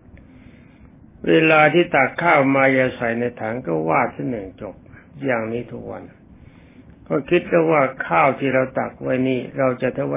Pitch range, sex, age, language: 120-155 Hz, male, 60-79, Thai